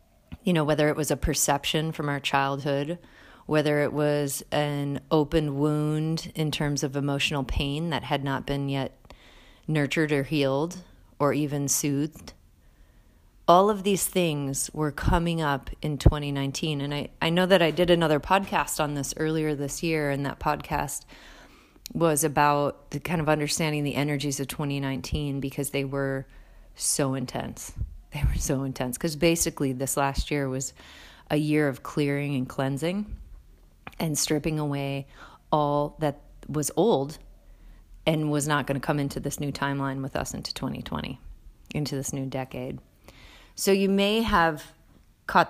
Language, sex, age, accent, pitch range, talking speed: English, female, 30-49, American, 135-155 Hz, 160 wpm